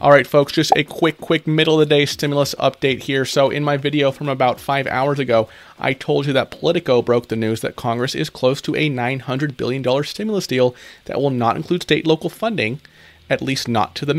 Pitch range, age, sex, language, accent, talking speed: 120-145 Hz, 30-49, male, English, American, 225 wpm